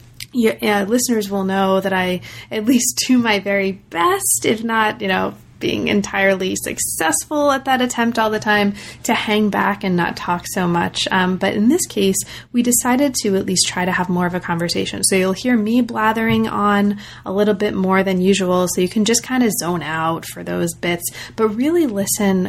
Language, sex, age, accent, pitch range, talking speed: English, female, 30-49, American, 185-225 Hz, 205 wpm